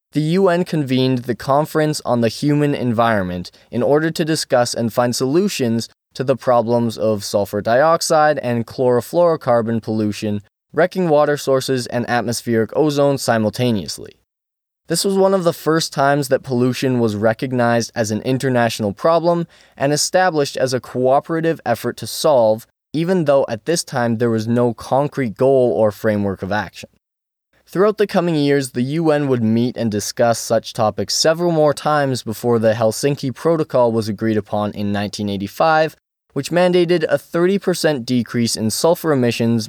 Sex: male